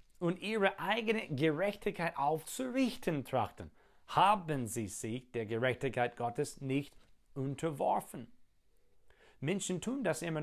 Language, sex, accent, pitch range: German, male, German, 125-195 Hz